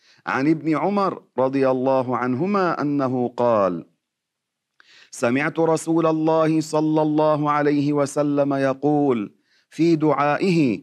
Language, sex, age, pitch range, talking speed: Arabic, male, 40-59, 140-170 Hz, 100 wpm